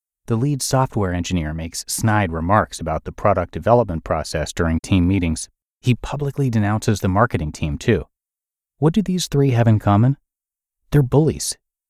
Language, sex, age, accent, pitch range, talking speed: English, male, 30-49, American, 90-125 Hz, 155 wpm